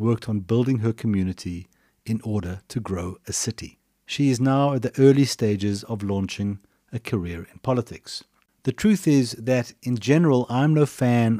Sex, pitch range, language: male, 100-125 Hz, English